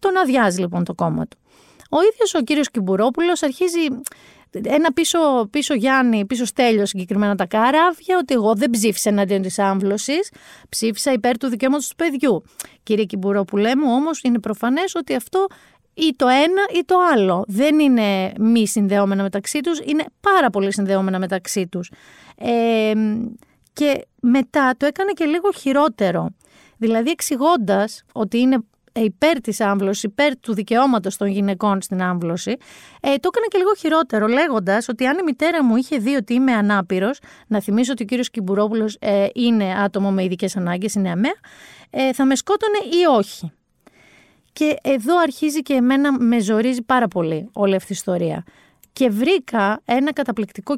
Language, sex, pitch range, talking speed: Greek, female, 200-290 Hz, 160 wpm